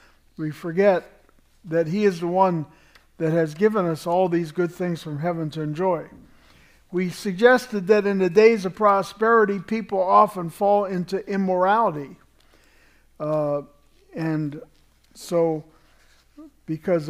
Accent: American